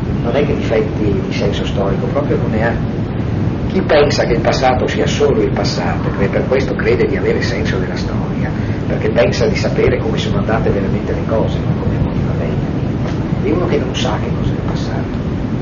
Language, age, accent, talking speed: Italian, 40-59, native, 205 wpm